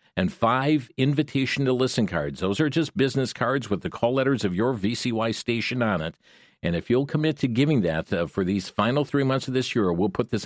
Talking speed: 230 wpm